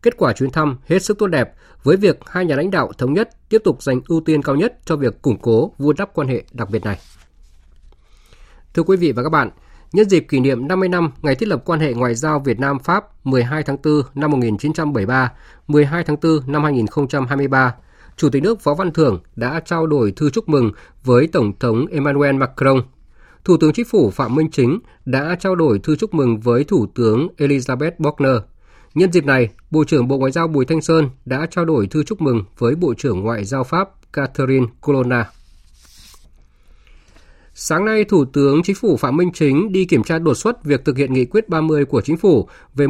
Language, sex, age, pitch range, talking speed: Vietnamese, male, 20-39, 125-160 Hz, 210 wpm